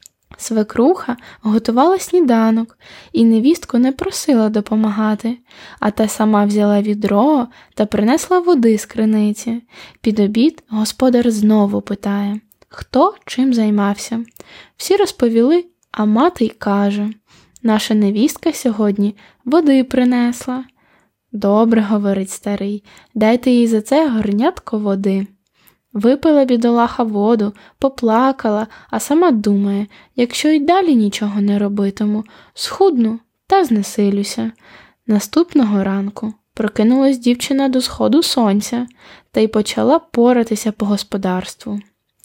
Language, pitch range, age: Ukrainian, 210-260 Hz, 10-29